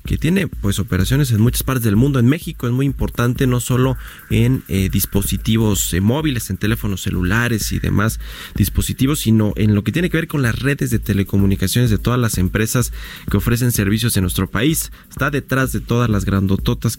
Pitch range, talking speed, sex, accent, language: 95-120 Hz, 195 wpm, male, Mexican, Spanish